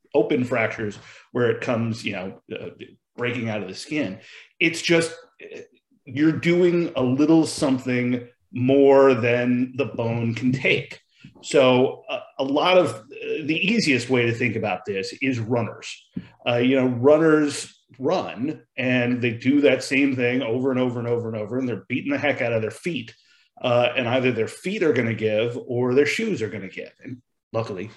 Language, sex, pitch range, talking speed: English, male, 115-145 Hz, 180 wpm